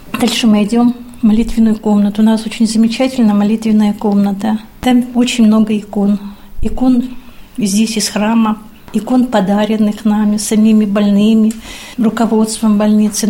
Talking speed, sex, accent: 120 wpm, female, native